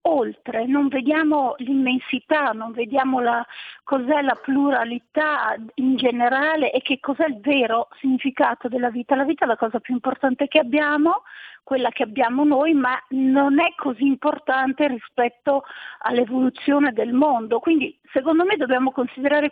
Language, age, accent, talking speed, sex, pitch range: Italian, 50-69, native, 145 wpm, female, 255-305 Hz